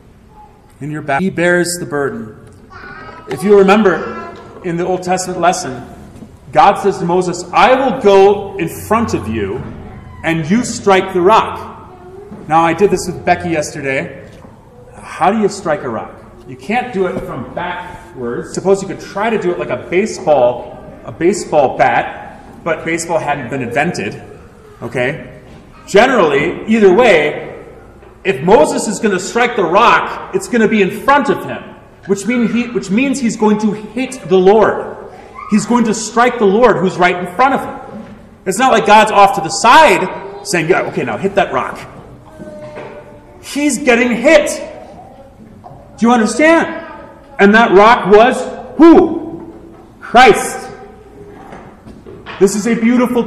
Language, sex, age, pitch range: English, male, 30-49, 180-235 Hz